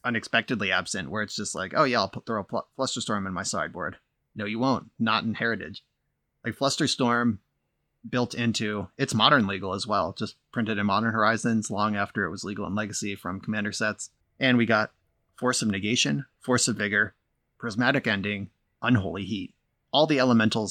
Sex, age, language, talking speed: male, 30-49, English, 190 wpm